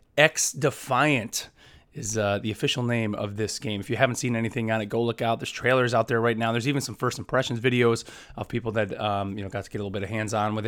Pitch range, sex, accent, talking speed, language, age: 115-150 Hz, male, American, 265 wpm, English, 30-49